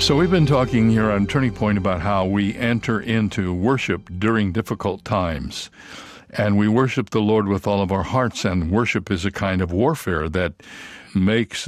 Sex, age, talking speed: male, 60-79, 185 wpm